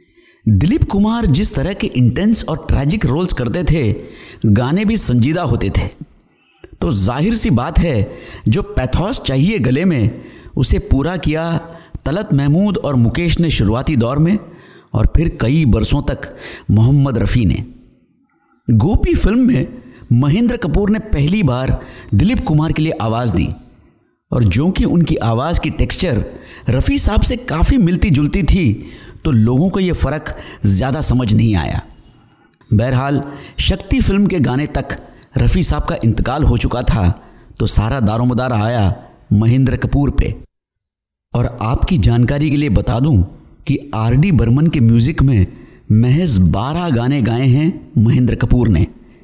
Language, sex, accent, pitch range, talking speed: Hindi, male, native, 110-150 Hz, 150 wpm